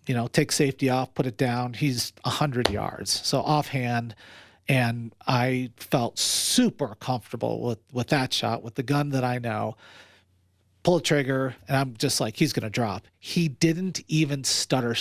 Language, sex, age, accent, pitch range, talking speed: English, male, 40-59, American, 110-140 Hz, 175 wpm